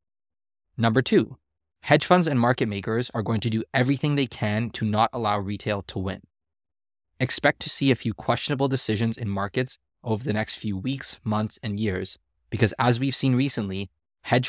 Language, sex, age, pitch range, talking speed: English, male, 20-39, 95-125 Hz, 180 wpm